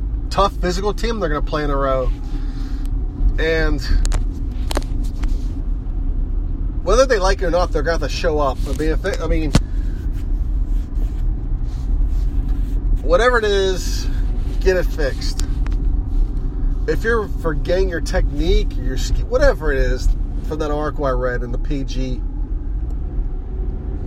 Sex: male